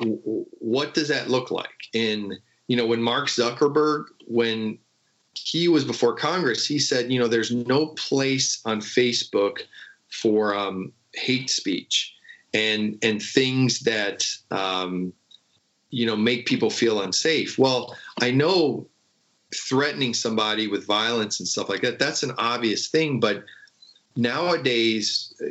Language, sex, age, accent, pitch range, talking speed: English, male, 40-59, American, 110-130 Hz, 135 wpm